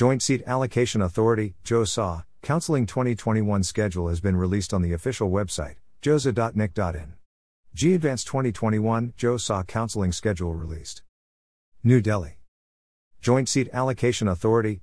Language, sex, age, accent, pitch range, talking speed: English, male, 50-69, American, 90-115 Hz, 115 wpm